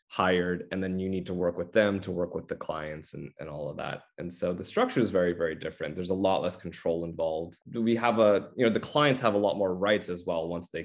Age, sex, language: 20-39, male, English